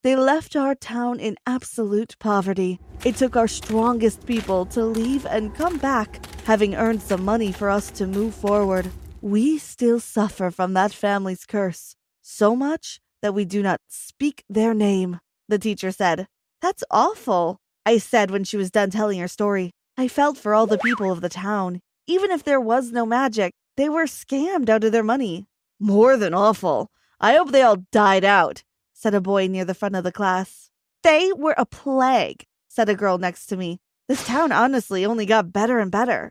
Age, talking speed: 20-39, 190 wpm